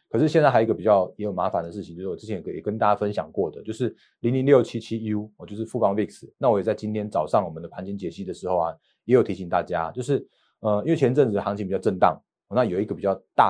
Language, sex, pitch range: Chinese, male, 100-125 Hz